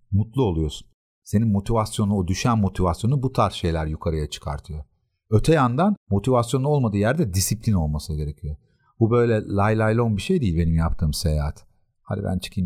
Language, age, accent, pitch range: Turkish, 50-69, native, 85-110 Hz